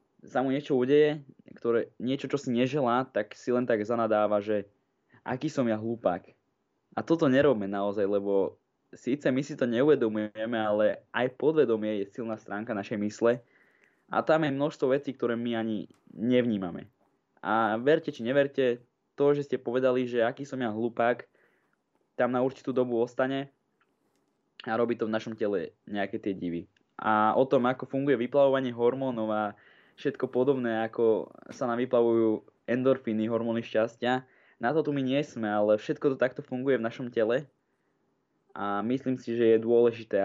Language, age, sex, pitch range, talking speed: Slovak, 20-39, male, 110-130 Hz, 160 wpm